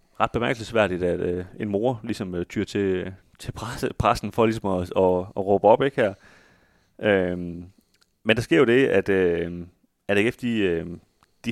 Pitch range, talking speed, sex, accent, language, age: 90-110 Hz, 180 wpm, male, native, Danish, 30-49